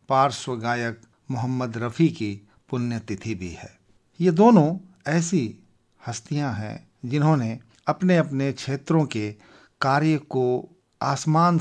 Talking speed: 110 wpm